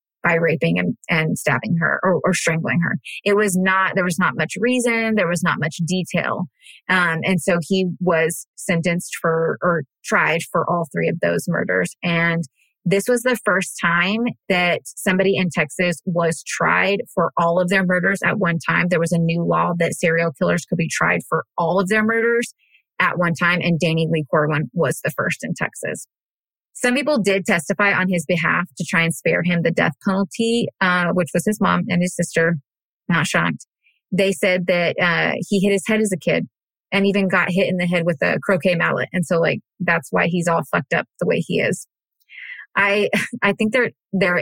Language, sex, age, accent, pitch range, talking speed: English, female, 20-39, American, 170-195 Hz, 205 wpm